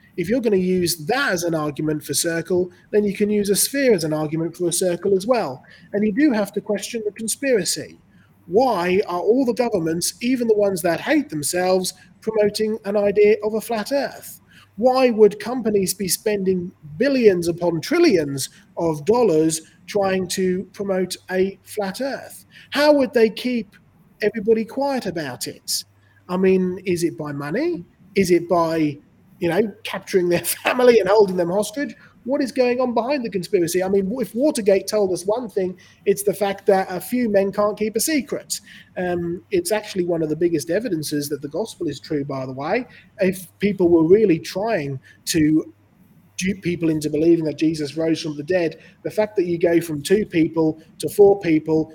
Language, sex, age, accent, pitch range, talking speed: English, male, 30-49, British, 165-215 Hz, 185 wpm